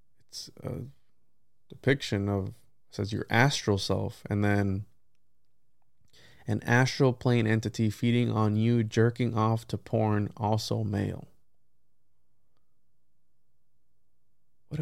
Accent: American